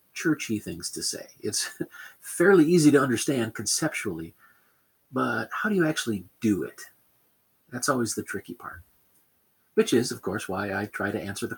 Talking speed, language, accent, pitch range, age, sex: 165 wpm, English, American, 105-140 Hz, 40-59, male